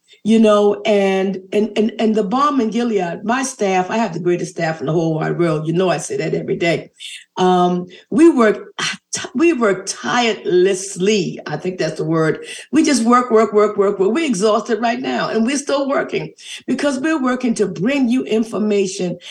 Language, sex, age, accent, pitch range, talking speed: English, female, 50-69, American, 195-255 Hz, 195 wpm